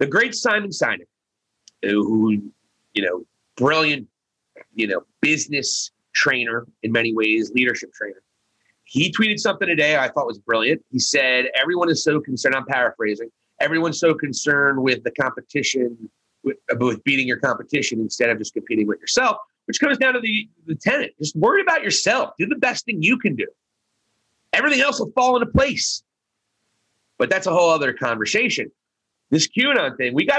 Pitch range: 115-190 Hz